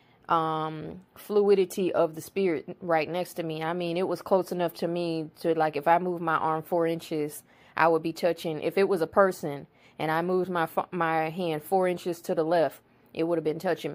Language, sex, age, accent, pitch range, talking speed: English, female, 20-39, American, 160-180 Hz, 220 wpm